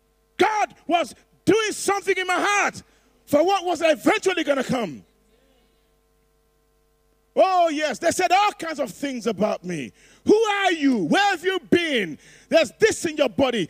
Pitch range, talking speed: 245-335 Hz, 155 wpm